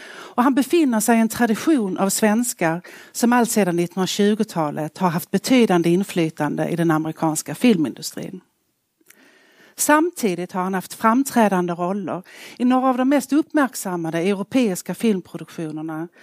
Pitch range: 170-235 Hz